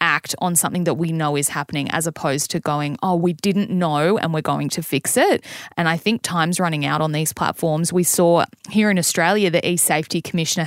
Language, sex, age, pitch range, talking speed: English, female, 20-39, 160-195 Hz, 220 wpm